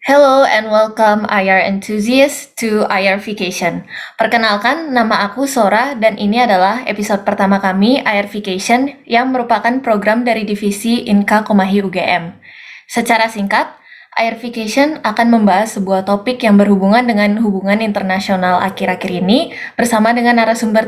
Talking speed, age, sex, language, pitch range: 130 wpm, 20-39, female, Indonesian, 200-230 Hz